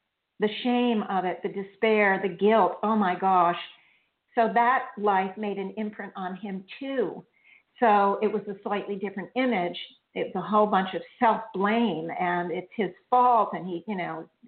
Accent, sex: American, female